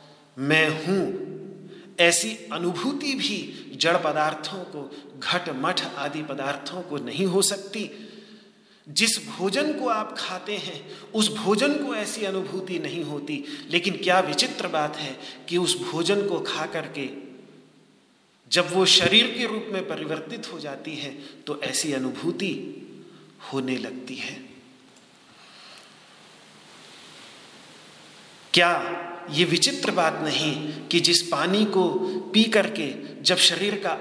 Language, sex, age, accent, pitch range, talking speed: Hindi, male, 40-59, native, 150-205 Hz, 120 wpm